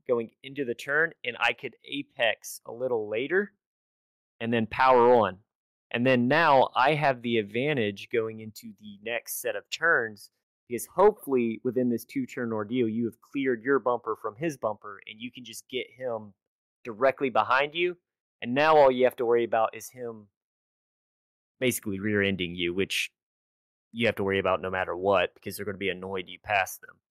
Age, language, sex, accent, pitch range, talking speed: 30-49, English, male, American, 110-135 Hz, 185 wpm